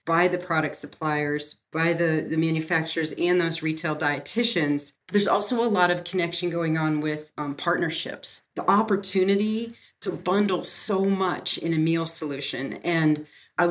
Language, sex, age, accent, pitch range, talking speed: English, female, 40-59, American, 155-205 Hz, 155 wpm